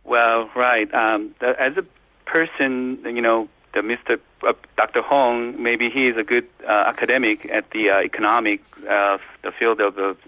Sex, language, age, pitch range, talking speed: male, English, 40-59, 100-120 Hz, 180 wpm